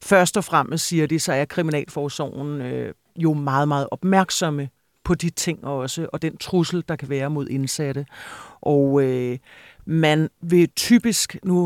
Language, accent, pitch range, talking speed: Danish, native, 155-180 Hz, 160 wpm